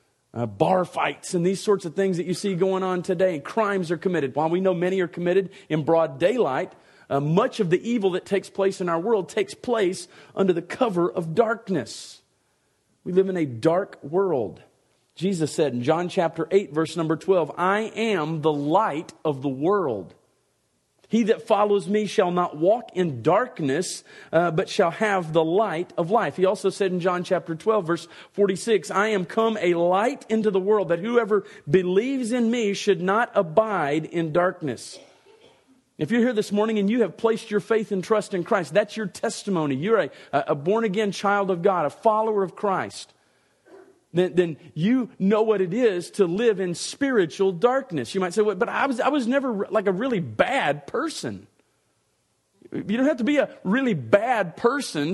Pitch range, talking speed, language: 175-220 Hz, 190 wpm, English